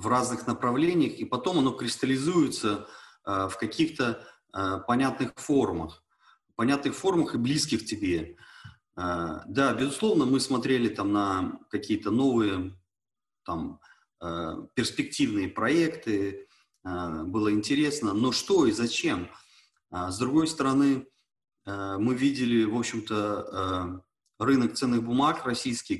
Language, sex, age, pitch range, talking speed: Turkish, male, 30-49, 95-135 Hz, 120 wpm